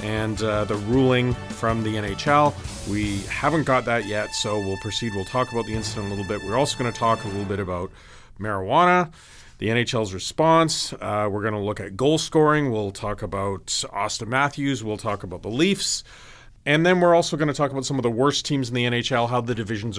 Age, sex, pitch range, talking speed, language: 40-59, male, 110-145 Hz, 220 wpm, English